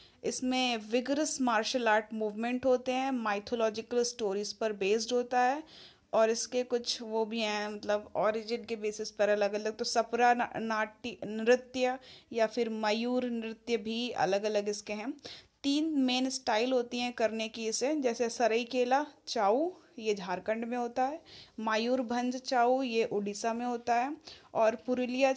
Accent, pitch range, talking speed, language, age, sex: native, 215-250 Hz, 155 wpm, Hindi, 20-39, female